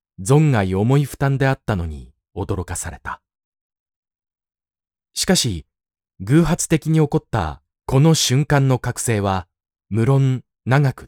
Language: Japanese